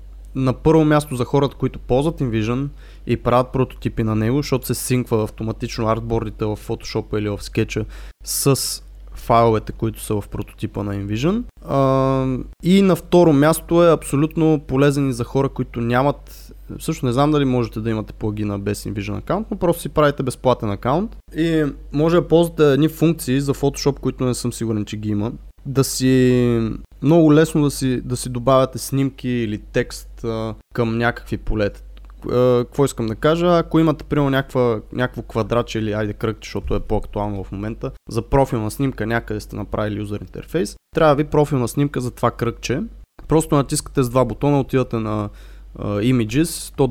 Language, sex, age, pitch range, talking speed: Bulgarian, male, 20-39, 110-140 Hz, 170 wpm